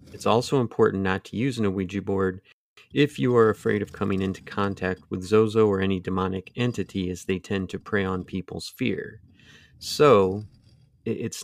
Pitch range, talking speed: 95-105 Hz, 175 wpm